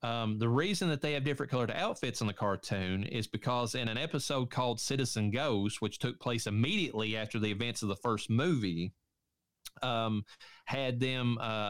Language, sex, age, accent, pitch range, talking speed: English, male, 30-49, American, 105-125 Hz, 180 wpm